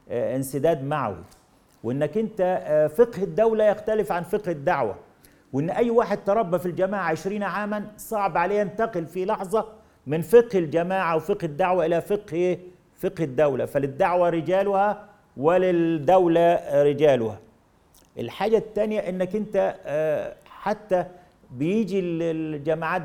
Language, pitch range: Arabic, 160-205 Hz